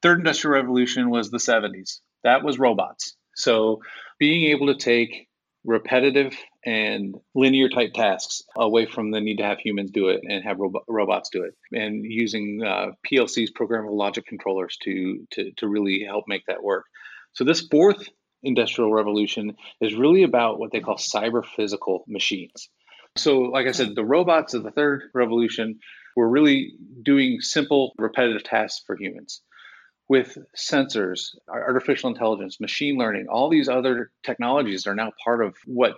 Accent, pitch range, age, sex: American, 110-140 Hz, 30-49, male